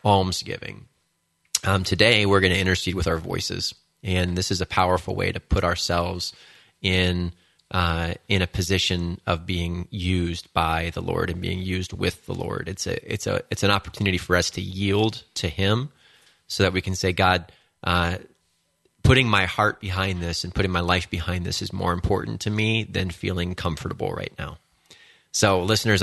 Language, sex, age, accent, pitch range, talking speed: English, male, 30-49, American, 90-100 Hz, 180 wpm